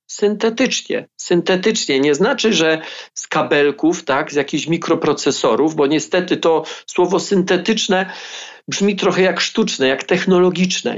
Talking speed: 120 wpm